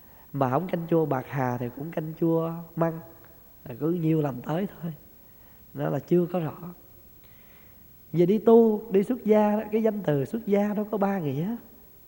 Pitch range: 150-205 Hz